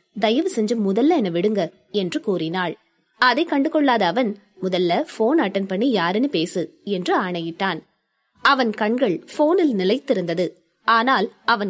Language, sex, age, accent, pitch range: Hindi, female, 20-39, native, 185-265 Hz